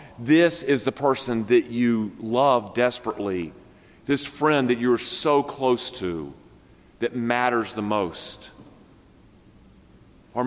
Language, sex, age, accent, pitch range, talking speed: English, male, 40-59, American, 120-195 Hz, 115 wpm